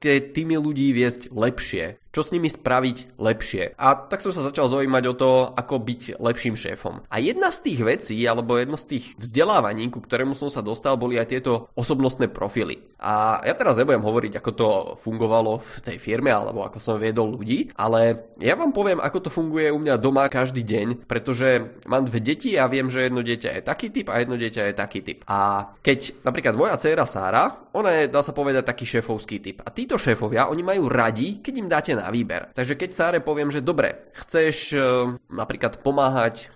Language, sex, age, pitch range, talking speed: Czech, male, 20-39, 115-150 Hz, 200 wpm